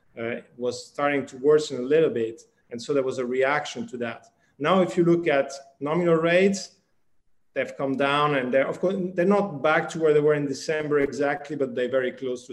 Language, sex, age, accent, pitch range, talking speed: English, male, 40-59, Italian, 130-165 Hz, 215 wpm